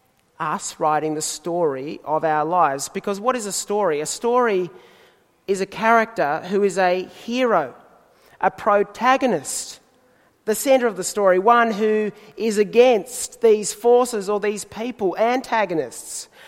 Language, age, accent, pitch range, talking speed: English, 30-49, Australian, 180-230 Hz, 140 wpm